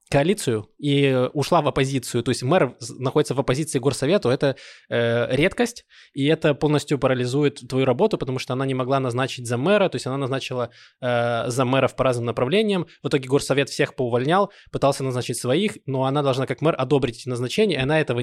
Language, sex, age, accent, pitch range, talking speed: Russian, male, 20-39, native, 125-150 Hz, 185 wpm